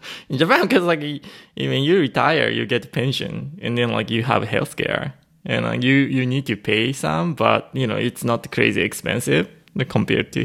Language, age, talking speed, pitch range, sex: English, 20-39, 210 wpm, 110-135 Hz, male